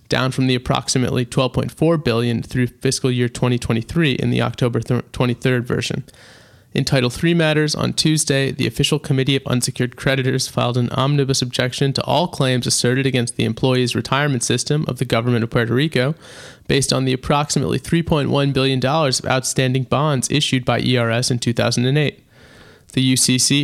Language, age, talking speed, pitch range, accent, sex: English, 30-49, 160 wpm, 125-140 Hz, American, male